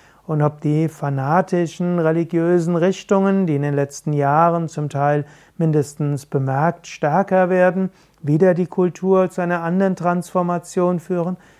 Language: German